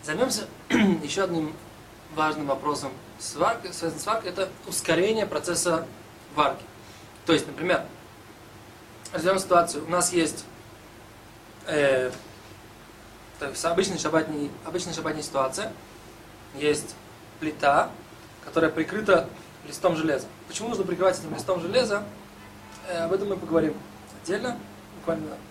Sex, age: male, 20-39